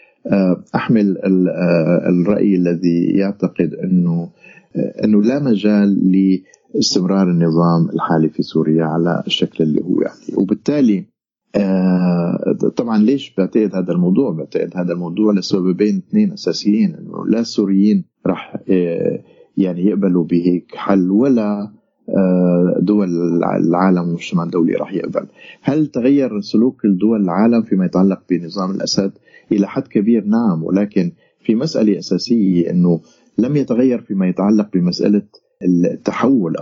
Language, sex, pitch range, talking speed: Arabic, male, 90-105 Hz, 115 wpm